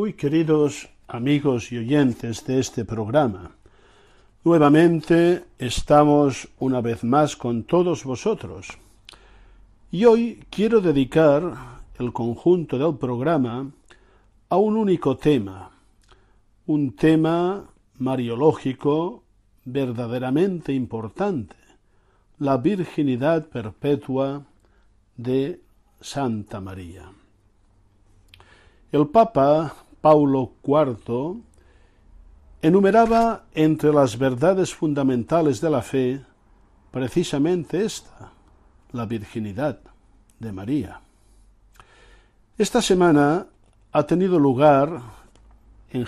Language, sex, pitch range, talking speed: Spanish, male, 105-150 Hz, 80 wpm